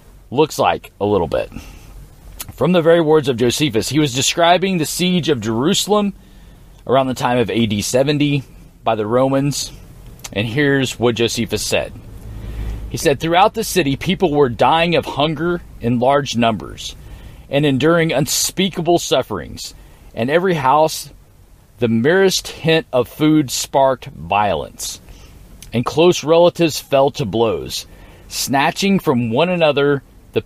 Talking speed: 140 wpm